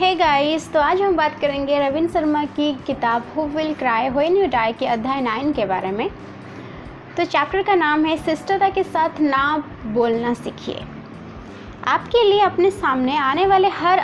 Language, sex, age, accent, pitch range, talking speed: Hindi, female, 20-39, native, 245-320 Hz, 180 wpm